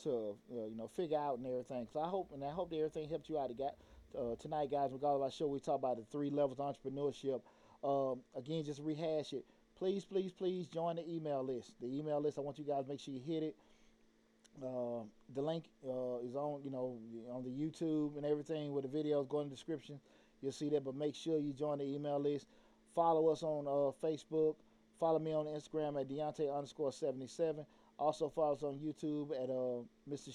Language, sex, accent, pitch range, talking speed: English, male, American, 120-150 Hz, 220 wpm